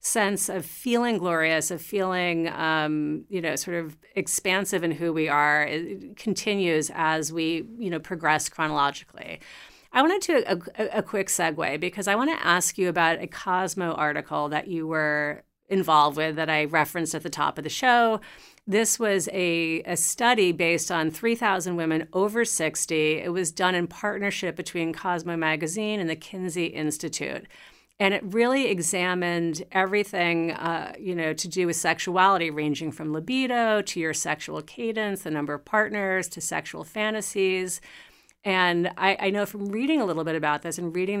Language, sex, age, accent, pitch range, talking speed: English, female, 40-59, American, 160-195 Hz, 170 wpm